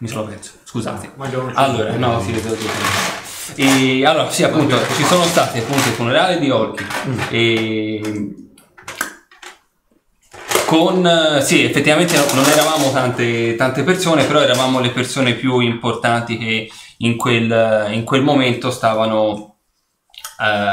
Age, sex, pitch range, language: 20-39, male, 110-135 Hz, Italian